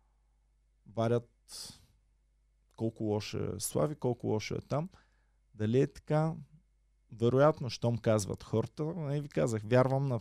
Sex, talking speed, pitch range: male, 125 wpm, 105-135 Hz